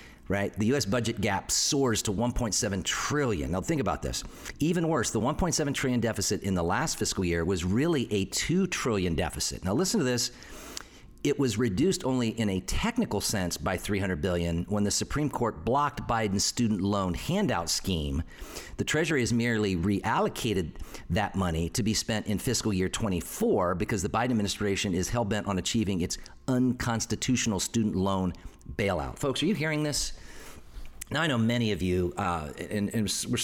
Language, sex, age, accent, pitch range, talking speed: English, male, 50-69, American, 95-120 Hz, 175 wpm